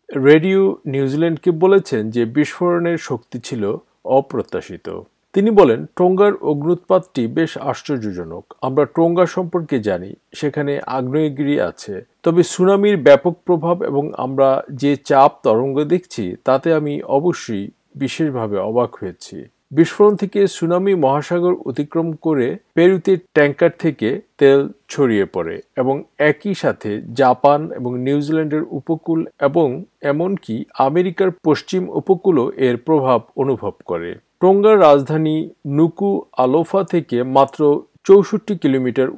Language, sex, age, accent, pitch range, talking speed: Bengali, male, 50-69, native, 135-175 Hz, 90 wpm